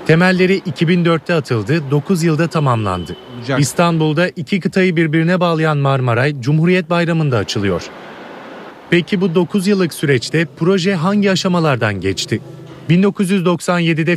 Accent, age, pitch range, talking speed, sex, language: native, 30-49, 150-190 Hz, 105 wpm, male, Turkish